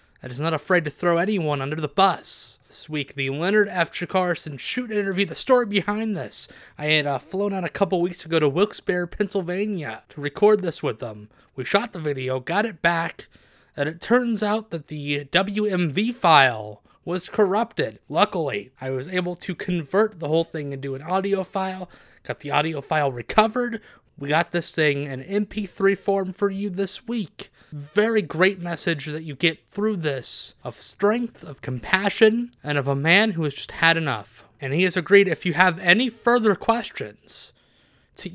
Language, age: English, 30-49